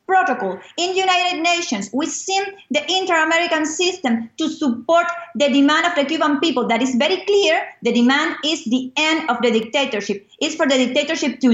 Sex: female